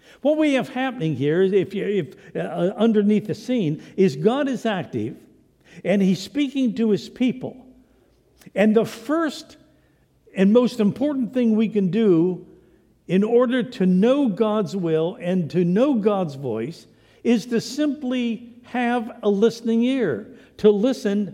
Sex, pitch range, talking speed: male, 190-230 Hz, 145 wpm